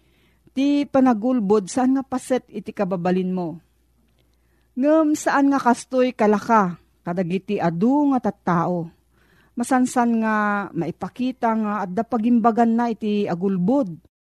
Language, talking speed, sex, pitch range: Filipino, 115 wpm, female, 185-245 Hz